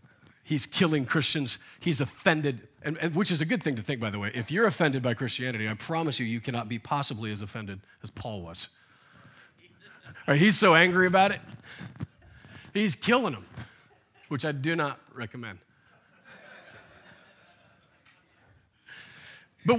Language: English